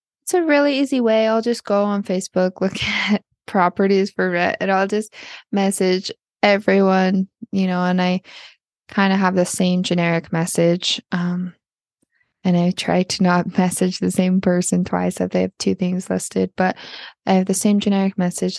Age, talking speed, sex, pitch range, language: 20-39, 180 wpm, female, 185-210 Hz, English